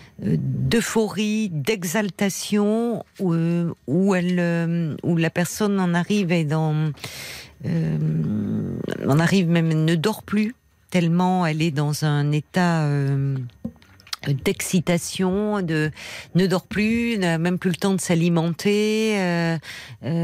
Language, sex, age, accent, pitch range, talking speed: French, female, 50-69, French, 150-180 Hz, 125 wpm